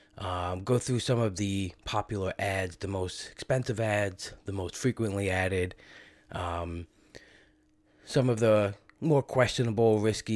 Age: 20-39